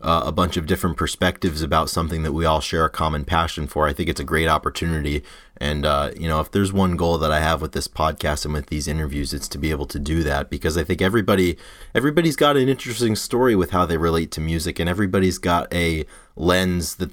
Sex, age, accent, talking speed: male, 30-49, American, 240 wpm